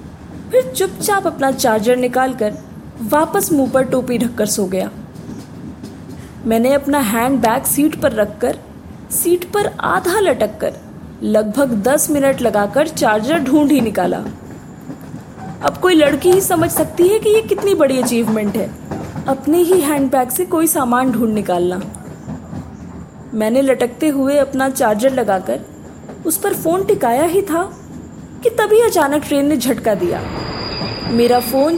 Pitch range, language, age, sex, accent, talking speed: 235-330 Hz, Hindi, 20-39, female, native, 140 wpm